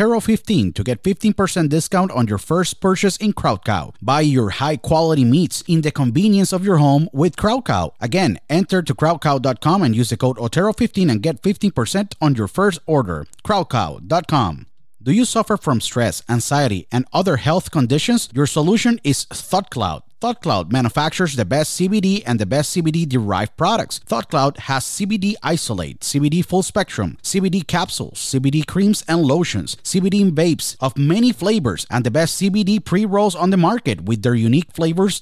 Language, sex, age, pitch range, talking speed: Spanish, male, 30-49, 130-190 Hz, 160 wpm